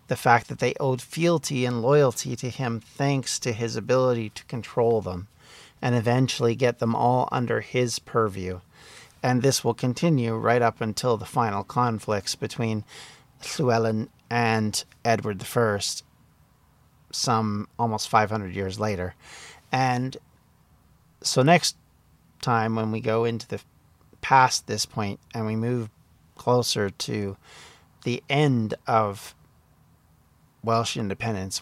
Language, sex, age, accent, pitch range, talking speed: English, male, 40-59, American, 110-130 Hz, 125 wpm